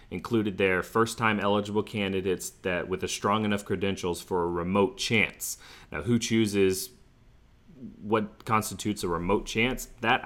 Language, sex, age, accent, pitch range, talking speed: English, male, 30-49, American, 95-115 Hz, 145 wpm